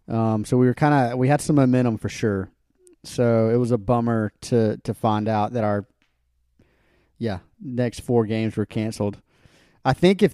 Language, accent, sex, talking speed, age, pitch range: English, American, male, 185 wpm, 30-49, 105-125 Hz